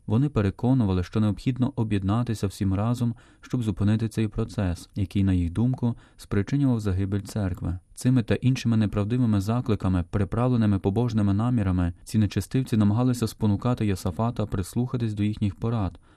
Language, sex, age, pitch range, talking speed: Ukrainian, male, 20-39, 100-120 Hz, 130 wpm